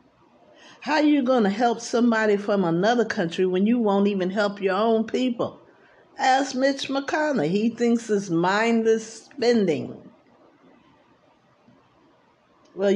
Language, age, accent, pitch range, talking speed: English, 50-69, American, 155-220 Hz, 125 wpm